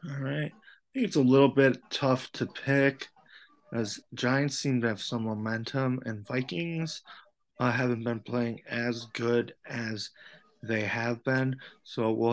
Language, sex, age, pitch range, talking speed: English, male, 20-39, 110-140 Hz, 150 wpm